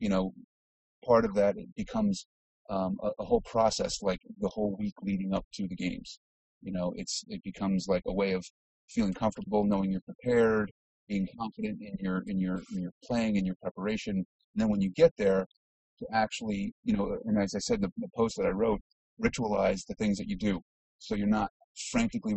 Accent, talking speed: American, 210 wpm